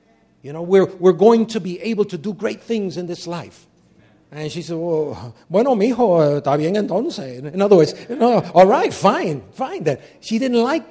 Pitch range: 160-235 Hz